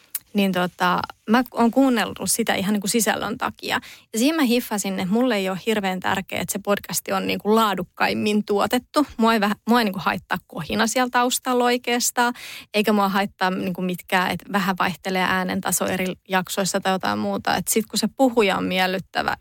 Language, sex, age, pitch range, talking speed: Finnish, female, 20-39, 190-225 Hz, 190 wpm